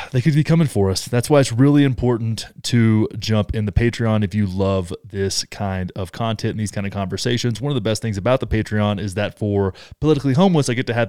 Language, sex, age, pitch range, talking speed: English, male, 20-39, 105-135 Hz, 245 wpm